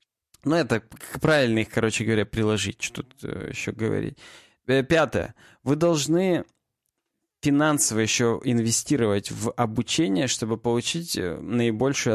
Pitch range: 115-150 Hz